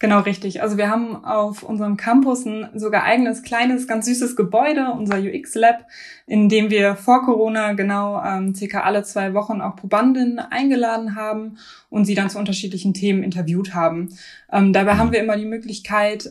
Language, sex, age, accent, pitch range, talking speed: German, female, 20-39, German, 195-220 Hz, 175 wpm